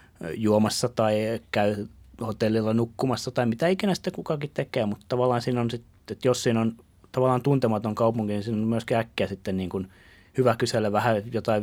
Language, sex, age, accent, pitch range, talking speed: Finnish, male, 30-49, native, 95-115 Hz, 180 wpm